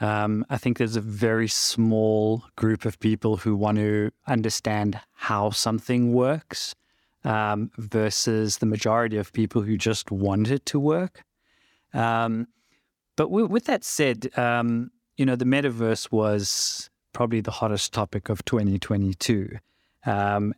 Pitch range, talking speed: 105-115 Hz, 140 wpm